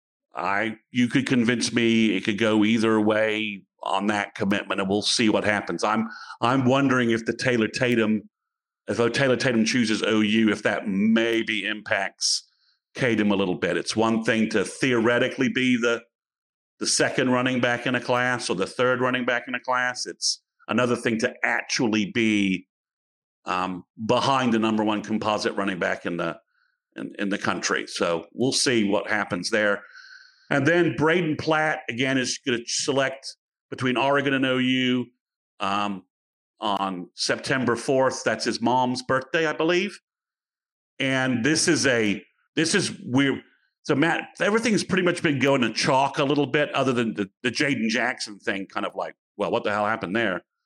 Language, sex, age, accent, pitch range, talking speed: English, male, 50-69, American, 110-140 Hz, 175 wpm